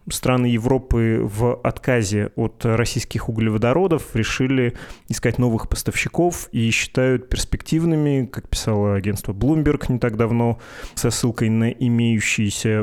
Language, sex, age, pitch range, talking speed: Russian, male, 20-39, 110-125 Hz, 115 wpm